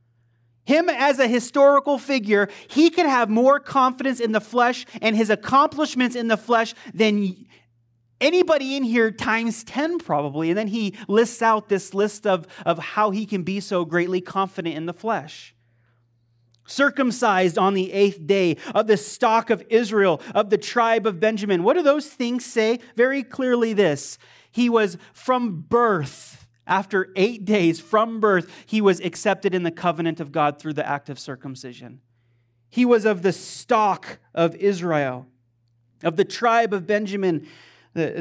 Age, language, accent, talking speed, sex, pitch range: 30-49, English, American, 160 wpm, male, 165-230 Hz